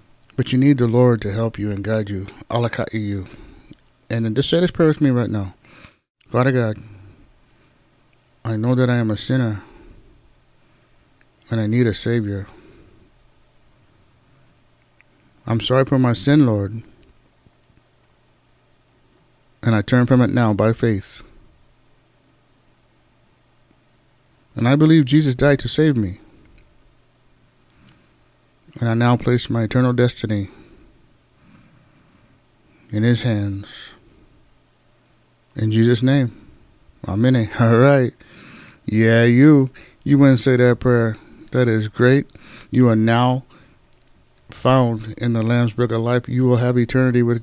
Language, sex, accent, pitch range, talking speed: English, male, American, 115-130 Hz, 125 wpm